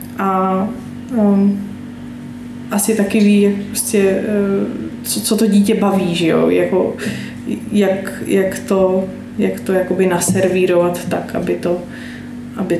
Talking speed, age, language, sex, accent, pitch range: 115 wpm, 20-39, Czech, female, native, 180-220 Hz